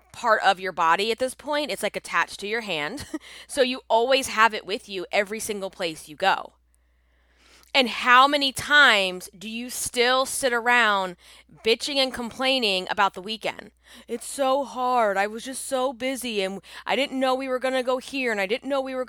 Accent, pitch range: American, 190-250 Hz